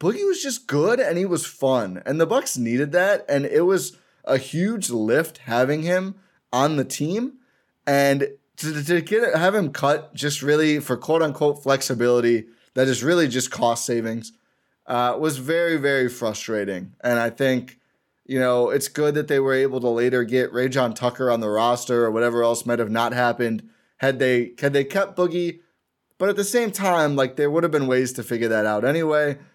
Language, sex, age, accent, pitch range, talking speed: English, male, 20-39, American, 120-160 Hz, 195 wpm